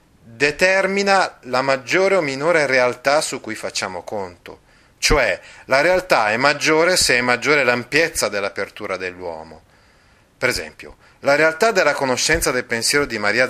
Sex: male